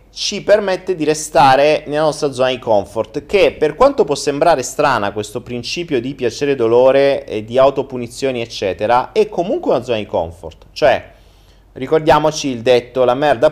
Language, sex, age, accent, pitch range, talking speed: Italian, male, 30-49, native, 105-140 Hz, 165 wpm